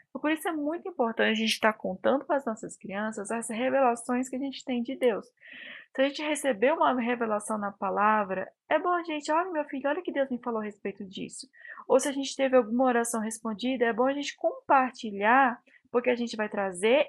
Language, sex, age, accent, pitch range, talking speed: Portuguese, female, 20-39, Brazilian, 205-275 Hz, 220 wpm